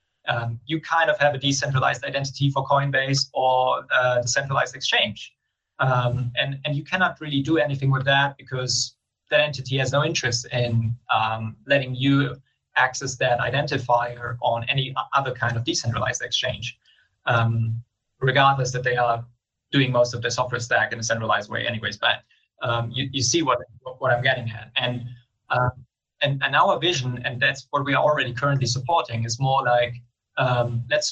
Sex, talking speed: male, 175 wpm